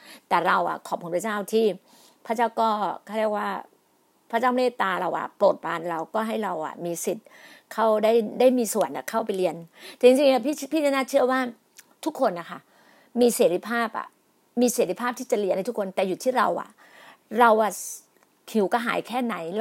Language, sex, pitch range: Thai, female, 200-255 Hz